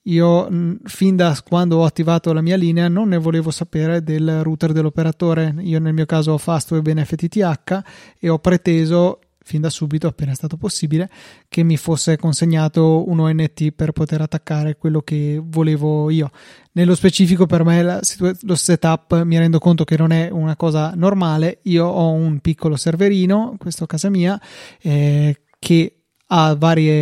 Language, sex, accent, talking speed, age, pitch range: Italian, male, native, 170 wpm, 30-49, 155-175 Hz